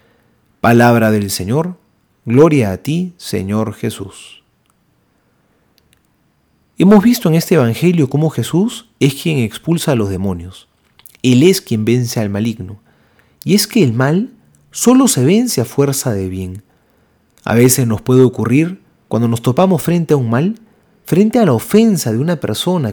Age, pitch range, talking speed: 40-59, 110-180 Hz, 150 wpm